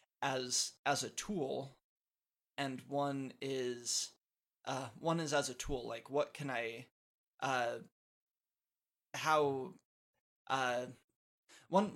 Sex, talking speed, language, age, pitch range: male, 105 wpm, English, 20-39, 130-145 Hz